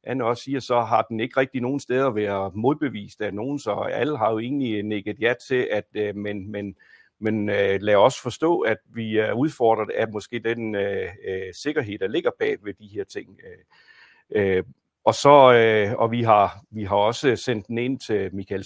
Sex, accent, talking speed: male, native, 200 wpm